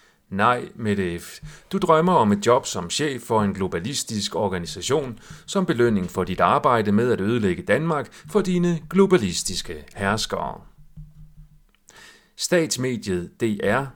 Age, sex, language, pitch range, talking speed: 40-59, male, Danish, 105-155 Hz, 120 wpm